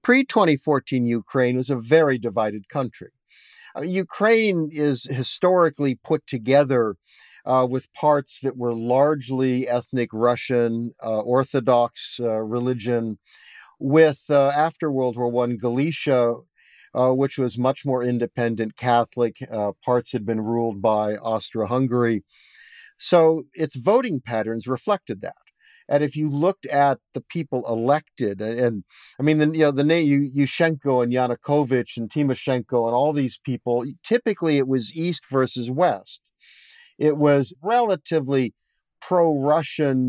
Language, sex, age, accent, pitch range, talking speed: English, male, 50-69, American, 120-155 Hz, 125 wpm